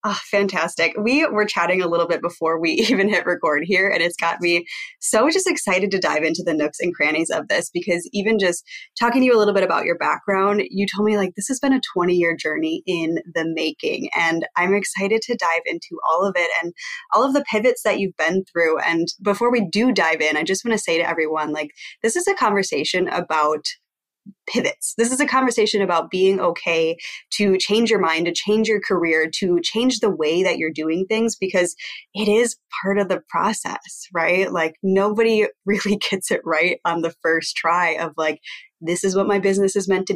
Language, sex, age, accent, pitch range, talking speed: English, female, 20-39, American, 170-220 Hz, 215 wpm